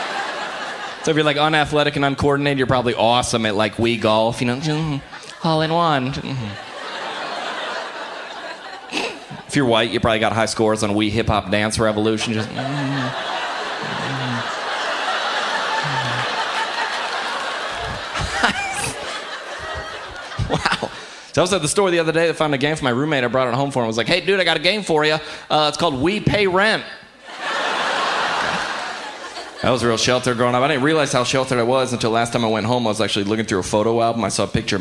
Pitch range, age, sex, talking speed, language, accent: 115-155 Hz, 30-49, male, 185 wpm, English, American